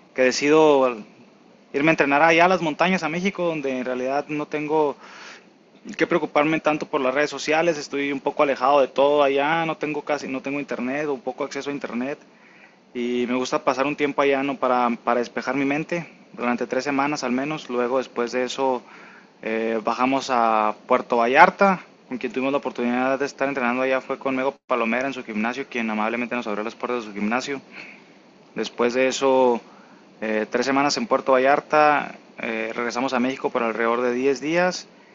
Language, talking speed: Spanish, 190 wpm